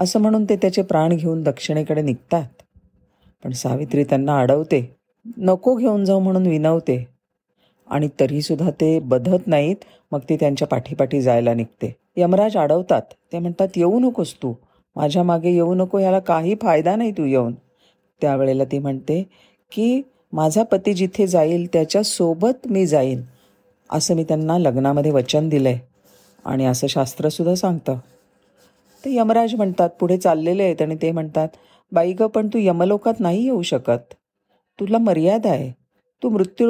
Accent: native